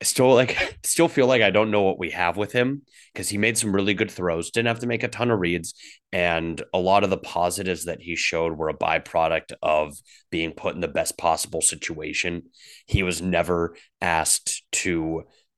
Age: 30-49